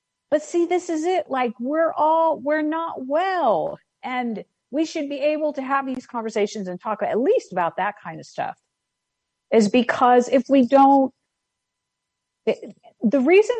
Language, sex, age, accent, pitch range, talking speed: English, female, 50-69, American, 190-270 Hz, 165 wpm